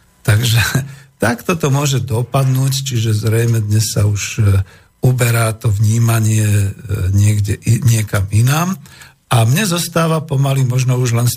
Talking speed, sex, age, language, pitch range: 125 wpm, male, 50-69, Slovak, 110-135 Hz